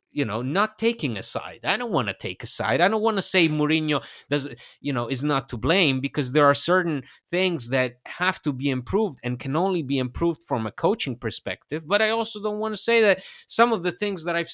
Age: 30-49